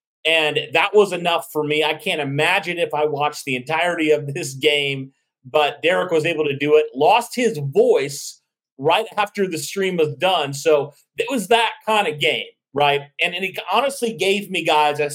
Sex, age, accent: male, 30-49, American